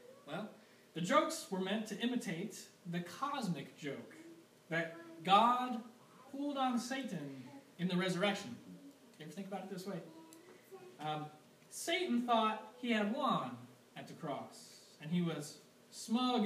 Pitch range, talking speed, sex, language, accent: 135-210 Hz, 140 wpm, male, English, American